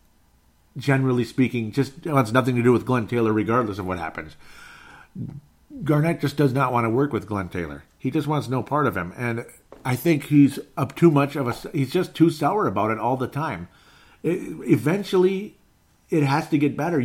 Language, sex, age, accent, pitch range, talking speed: English, male, 50-69, American, 110-140 Hz, 195 wpm